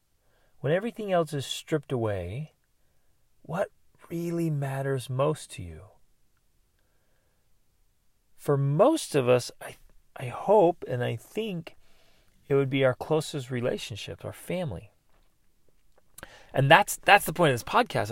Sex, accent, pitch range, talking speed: male, American, 115-155 Hz, 125 wpm